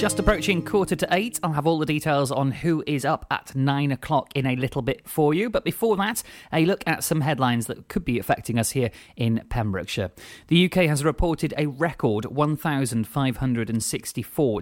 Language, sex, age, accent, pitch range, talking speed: English, male, 30-49, British, 115-155 Hz, 190 wpm